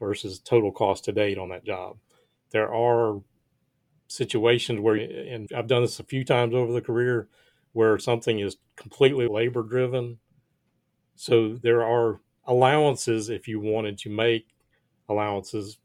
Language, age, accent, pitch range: English, 40-59, American, 105-125 Hz